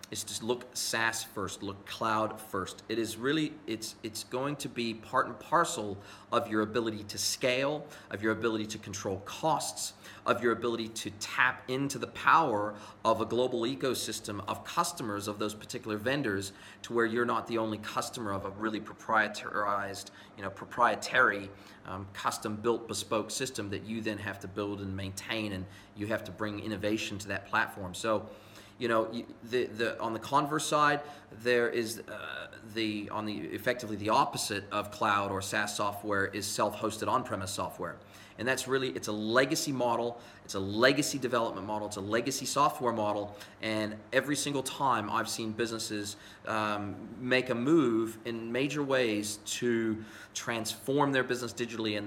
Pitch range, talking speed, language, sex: 105-120 Hz, 170 wpm, English, male